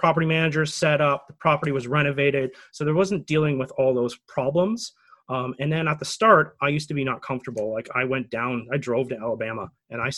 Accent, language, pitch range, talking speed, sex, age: American, English, 130-155 Hz, 225 wpm, male, 30-49